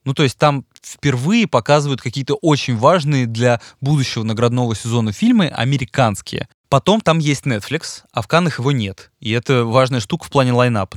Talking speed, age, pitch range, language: 170 wpm, 20-39, 115-140 Hz, Russian